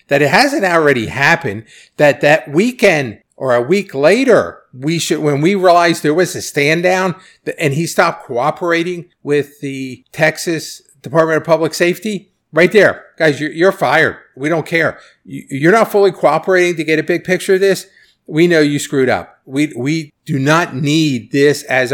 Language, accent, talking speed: English, American, 180 wpm